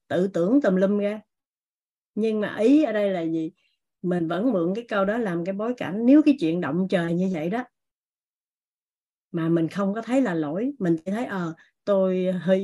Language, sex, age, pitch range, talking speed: Vietnamese, female, 20-39, 175-225 Hz, 205 wpm